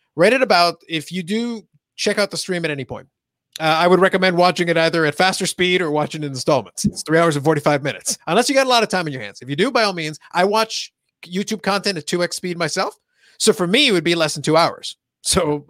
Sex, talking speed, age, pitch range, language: male, 255 wpm, 30-49, 160-200 Hz, English